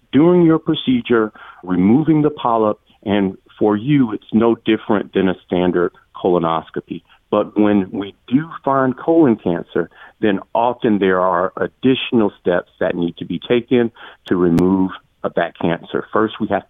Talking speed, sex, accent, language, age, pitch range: 145 wpm, male, American, English, 50-69, 90-120 Hz